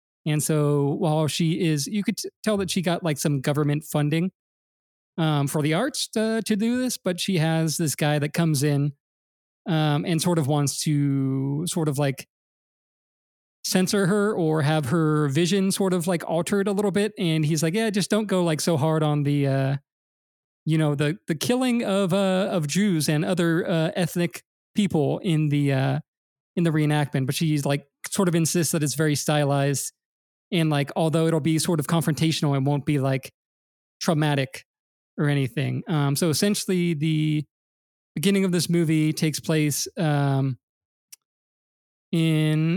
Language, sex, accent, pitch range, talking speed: English, male, American, 145-175 Hz, 175 wpm